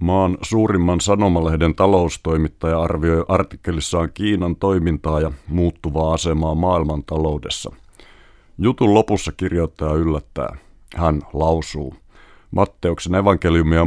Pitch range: 80-95 Hz